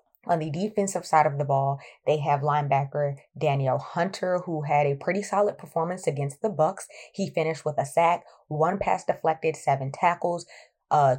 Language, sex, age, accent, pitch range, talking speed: English, female, 20-39, American, 145-170 Hz, 170 wpm